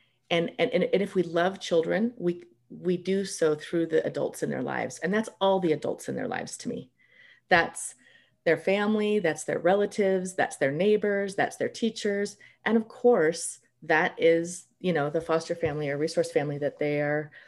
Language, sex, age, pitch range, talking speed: English, female, 30-49, 145-195 Hz, 190 wpm